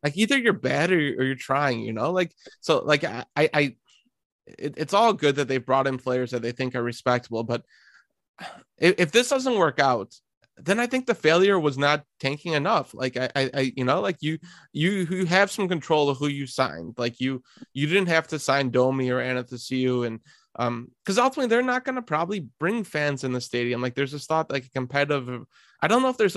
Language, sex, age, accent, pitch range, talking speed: English, male, 20-39, American, 125-160 Hz, 230 wpm